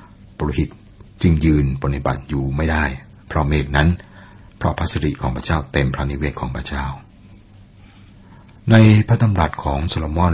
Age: 60-79